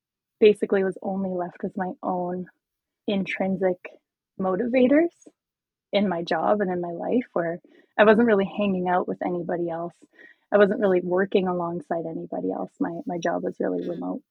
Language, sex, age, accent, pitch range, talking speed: English, female, 20-39, American, 180-225 Hz, 160 wpm